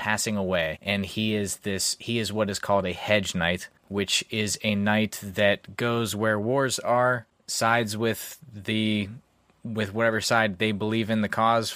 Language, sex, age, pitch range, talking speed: English, male, 20-39, 95-110 Hz, 175 wpm